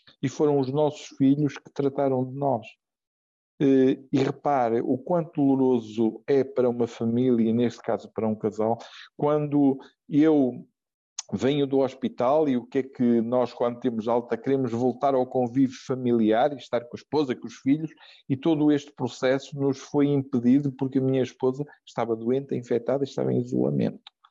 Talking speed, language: 165 wpm, Portuguese